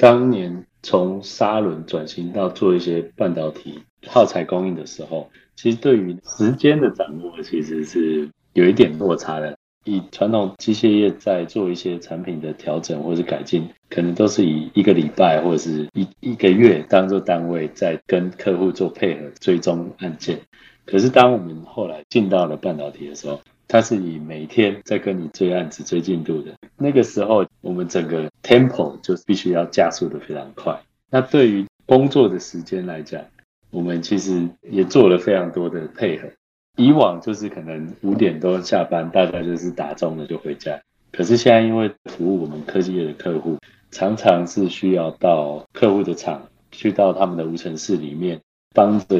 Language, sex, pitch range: Chinese, male, 85-100 Hz